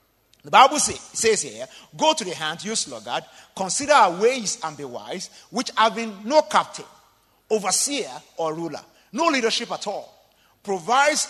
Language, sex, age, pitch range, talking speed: English, male, 50-69, 185-265 Hz, 150 wpm